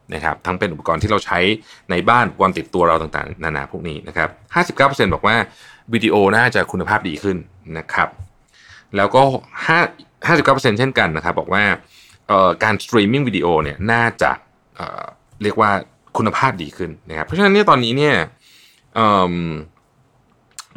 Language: Thai